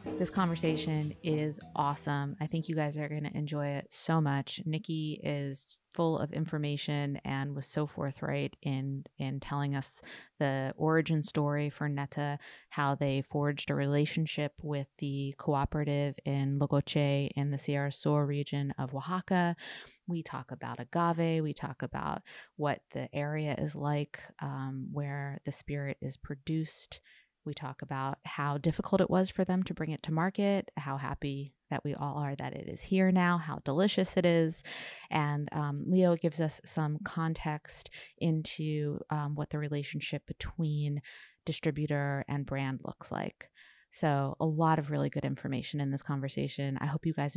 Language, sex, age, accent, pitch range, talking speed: English, female, 20-39, American, 140-160 Hz, 165 wpm